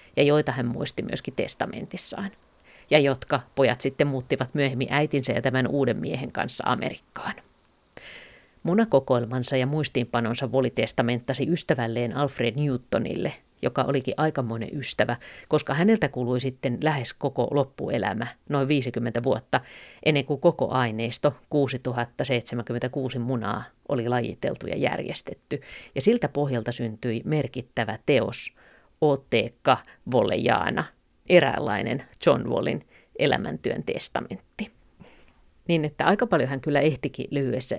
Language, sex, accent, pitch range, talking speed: Finnish, female, native, 120-145 Hz, 115 wpm